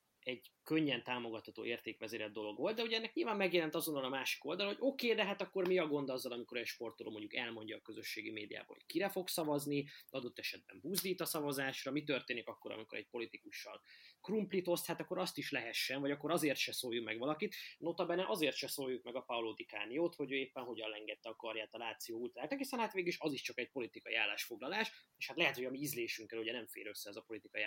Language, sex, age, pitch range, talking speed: Hungarian, male, 20-39, 120-170 Hz, 230 wpm